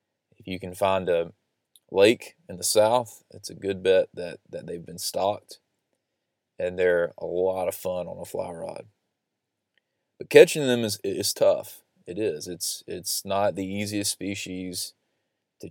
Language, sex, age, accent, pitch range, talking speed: English, male, 20-39, American, 90-100 Hz, 160 wpm